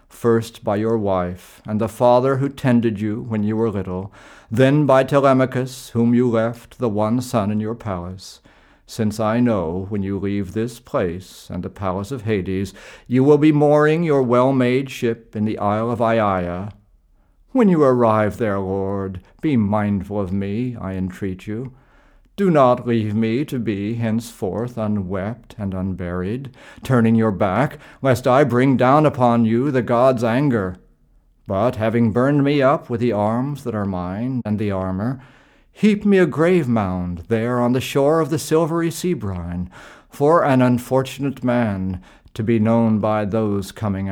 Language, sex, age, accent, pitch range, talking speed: English, male, 50-69, American, 100-130 Hz, 165 wpm